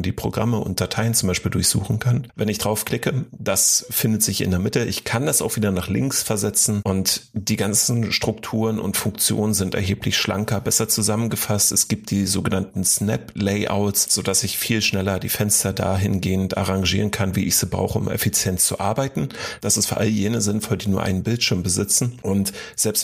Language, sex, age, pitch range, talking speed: German, male, 40-59, 95-110 Hz, 185 wpm